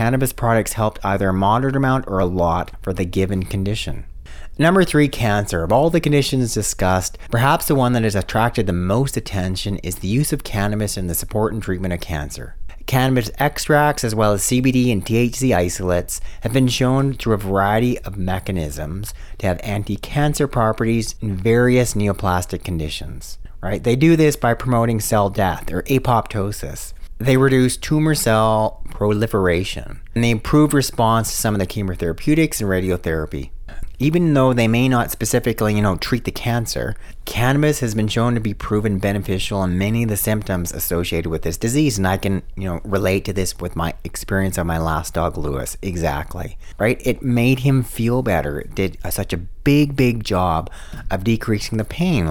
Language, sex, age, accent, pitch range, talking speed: English, male, 30-49, American, 90-125 Hz, 180 wpm